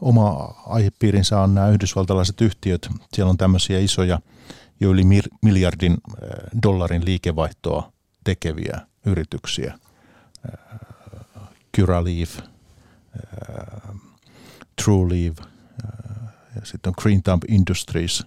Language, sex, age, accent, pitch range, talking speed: Finnish, male, 50-69, native, 90-110 Hz, 80 wpm